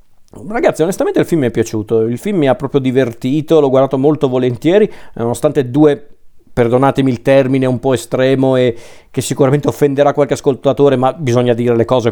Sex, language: male, Italian